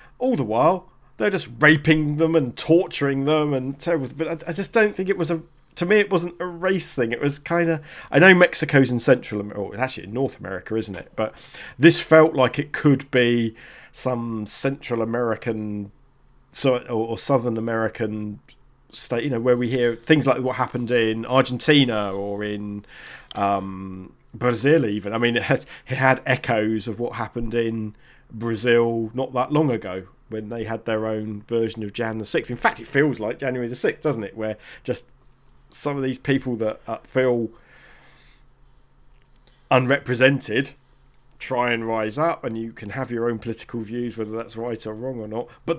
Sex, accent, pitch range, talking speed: male, British, 115-140 Hz, 185 wpm